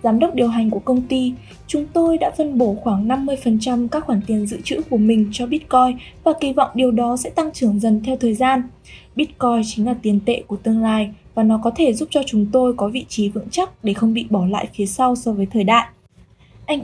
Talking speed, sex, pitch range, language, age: 240 wpm, female, 220-265 Hz, Vietnamese, 10-29